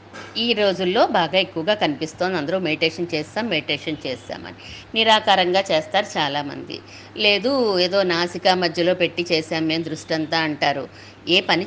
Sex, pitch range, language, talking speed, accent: female, 175-250 Hz, Telugu, 125 wpm, native